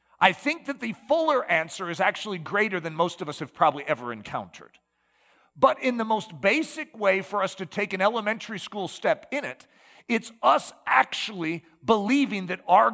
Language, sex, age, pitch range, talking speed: English, male, 40-59, 135-205 Hz, 180 wpm